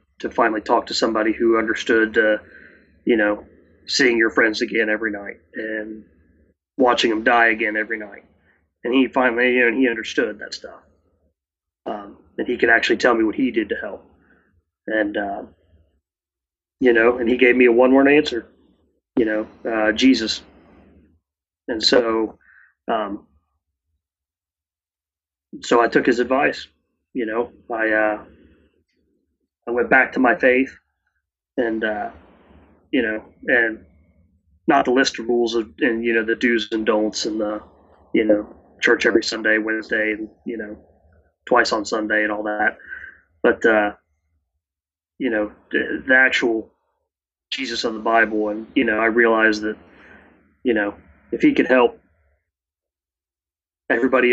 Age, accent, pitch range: 30-49, American, 80-115 Hz